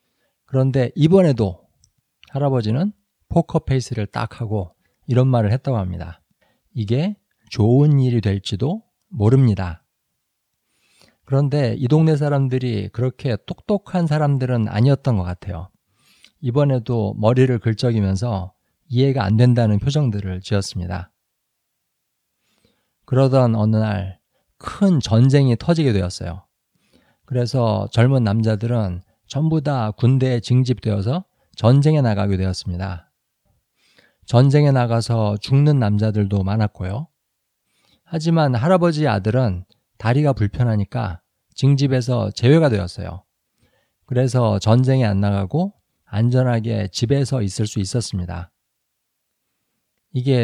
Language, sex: Korean, male